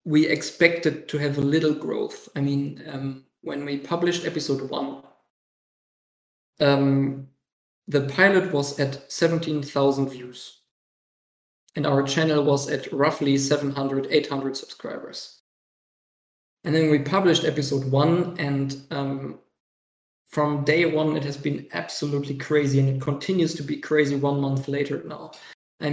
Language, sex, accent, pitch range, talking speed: English, male, German, 140-155 Hz, 135 wpm